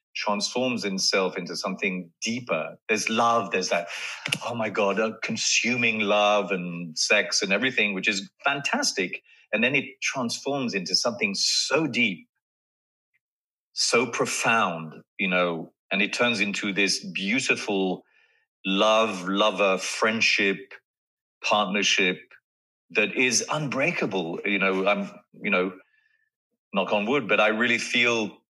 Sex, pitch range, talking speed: male, 100-130 Hz, 125 wpm